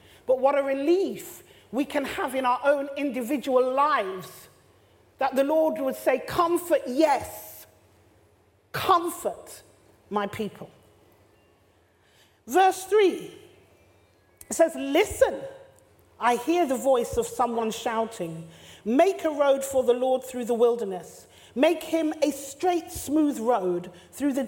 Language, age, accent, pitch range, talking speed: English, 40-59, British, 205-290 Hz, 125 wpm